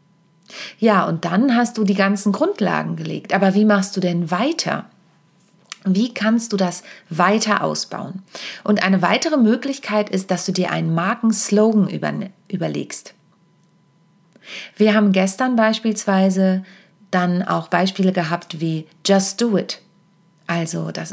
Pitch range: 175-205 Hz